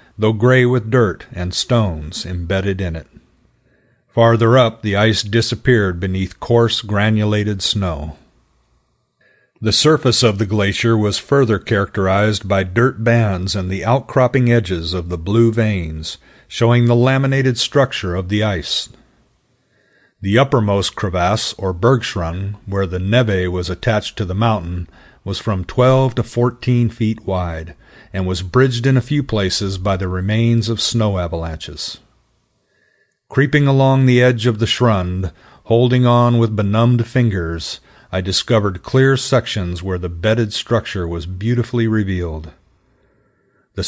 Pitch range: 95-120 Hz